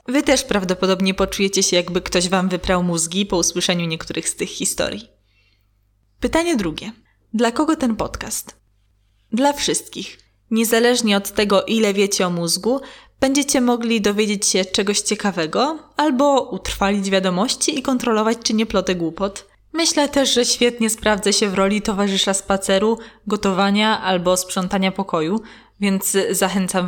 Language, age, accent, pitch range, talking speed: Polish, 20-39, native, 190-230 Hz, 140 wpm